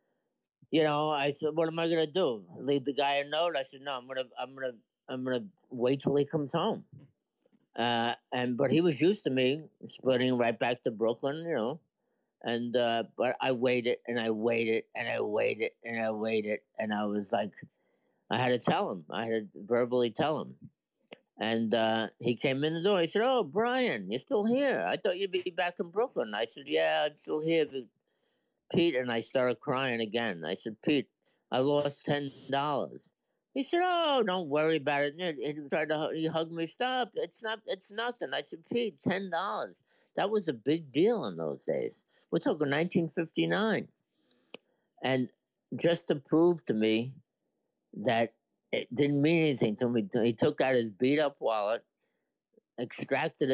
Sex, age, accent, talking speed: male, 50-69, American, 185 wpm